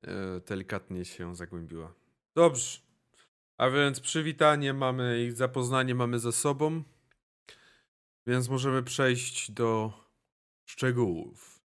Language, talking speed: Polish, 95 wpm